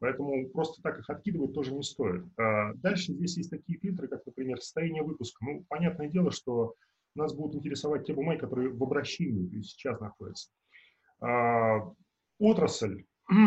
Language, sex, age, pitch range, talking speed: Russian, male, 20-39, 125-165 Hz, 145 wpm